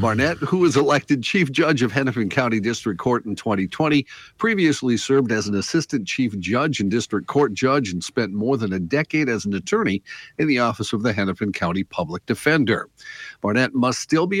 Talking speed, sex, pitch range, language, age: 190 wpm, male, 105-140 Hz, English, 50-69